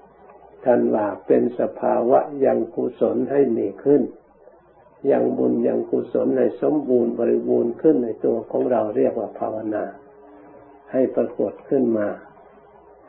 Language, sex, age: Thai, male, 60-79